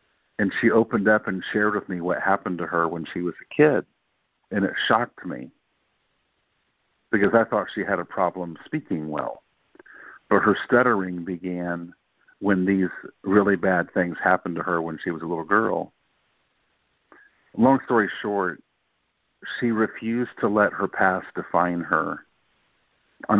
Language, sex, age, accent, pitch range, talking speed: English, male, 50-69, American, 85-105 Hz, 155 wpm